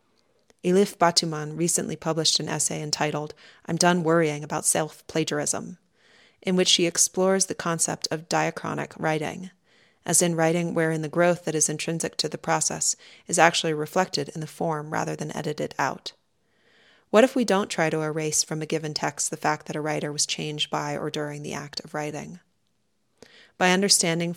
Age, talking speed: 30-49, 170 wpm